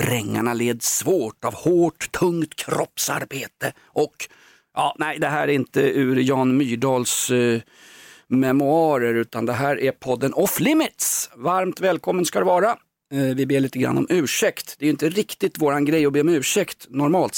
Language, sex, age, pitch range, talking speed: Swedish, male, 40-59, 115-165 Hz, 175 wpm